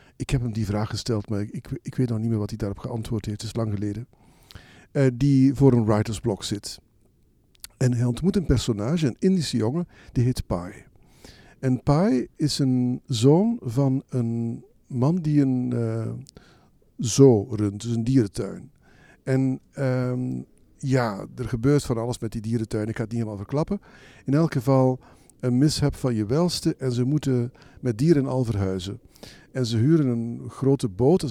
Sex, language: male, Dutch